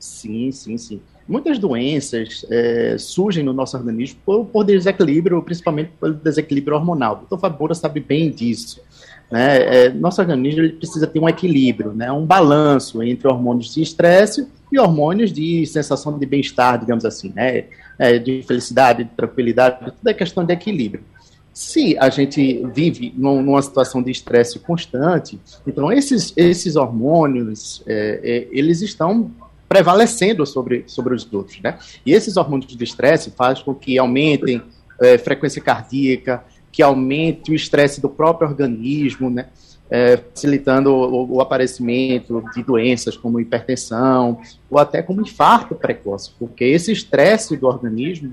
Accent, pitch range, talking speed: Brazilian, 125-160 Hz, 150 wpm